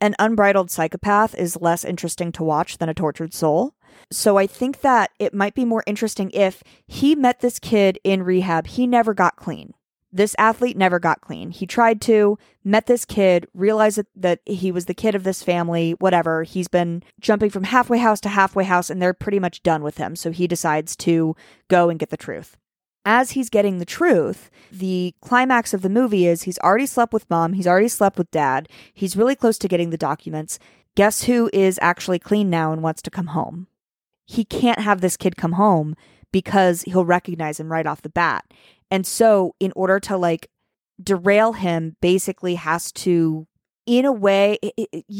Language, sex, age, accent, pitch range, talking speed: English, female, 30-49, American, 170-210 Hz, 195 wpm